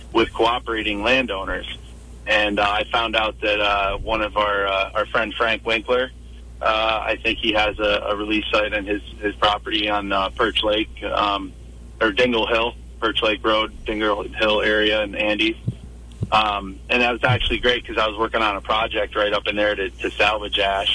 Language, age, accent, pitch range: English, 30-49, American, 90-110 Hz